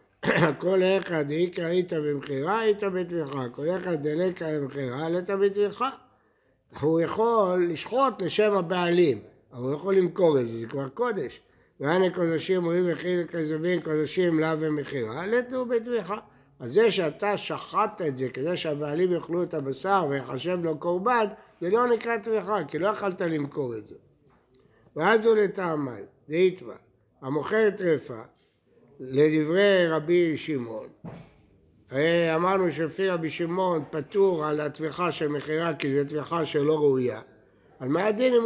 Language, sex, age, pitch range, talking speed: Hebrew, male, 60-79, 145-190 Hz, 135 wpm